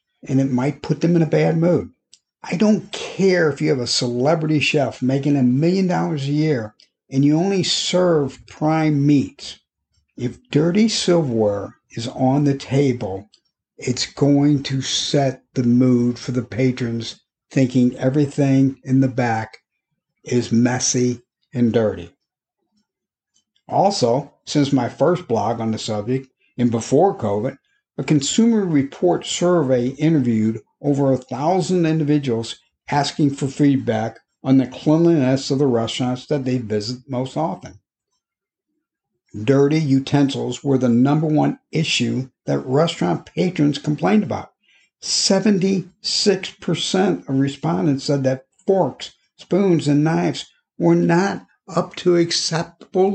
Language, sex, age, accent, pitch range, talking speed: English, male, 50-69, American, 125-170 Hz, 130 wpm